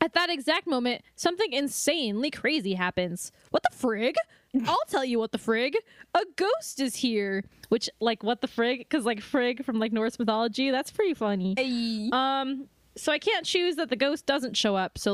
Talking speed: 190 wpm